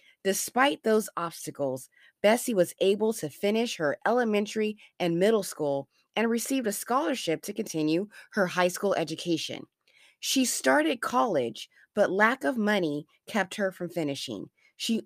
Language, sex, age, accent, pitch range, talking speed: English, female, 20-39, American, 160-225 Hz, 140 wpm